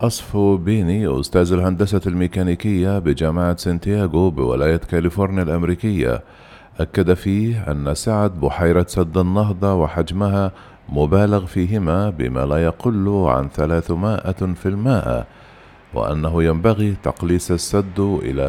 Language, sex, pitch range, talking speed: Arabic, male, 80-100 Hz, 105 wpm